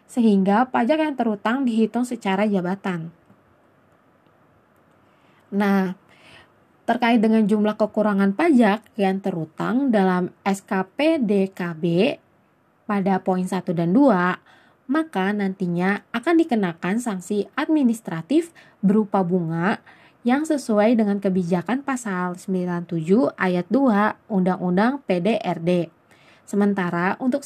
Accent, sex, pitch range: native, female, 190-245 Hz